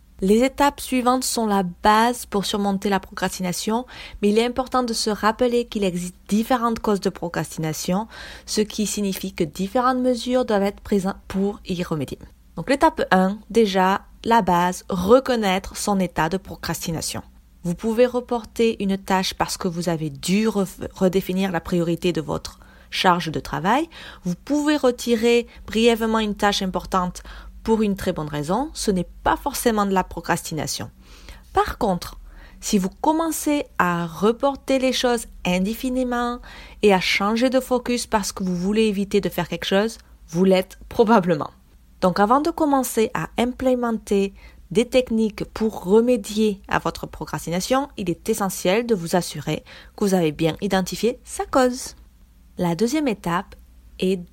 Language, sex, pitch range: French, female, 180-235 Hz